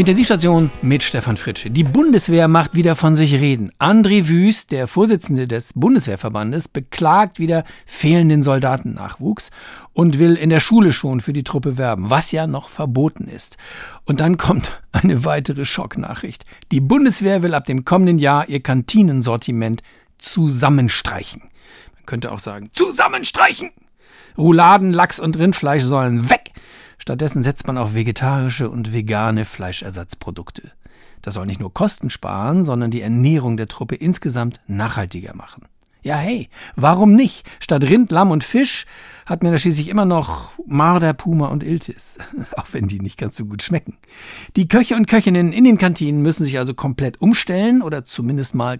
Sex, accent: male, German